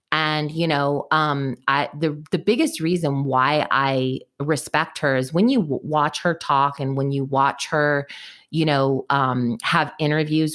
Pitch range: 140-170 Hz